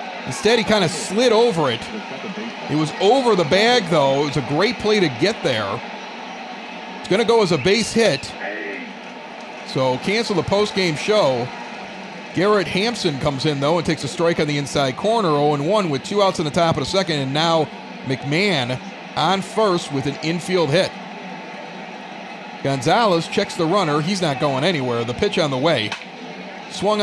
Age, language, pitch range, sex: 40-59, English, 150-205 Hz, male